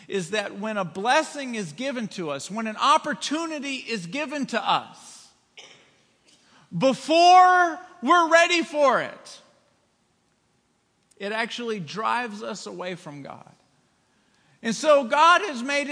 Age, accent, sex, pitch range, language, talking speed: 50-69, American, male, 200-285 Hz, English, 125 wpm